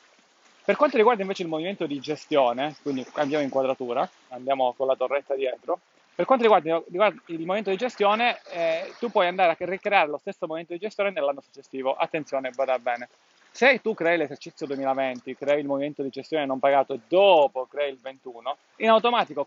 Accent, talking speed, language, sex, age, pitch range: native, 180 wpm, Italian, male, 30-49, 140-200 Hz